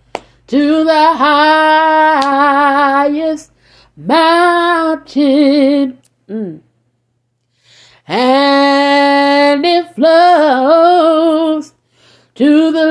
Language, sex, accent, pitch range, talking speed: English, female, American, 275-340 Hz, 45 wpm